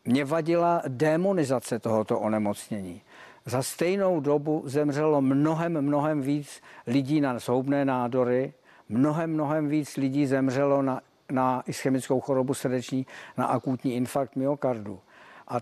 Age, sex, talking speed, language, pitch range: 50-69, male, 120 wpm, Czech, 120-140 Hz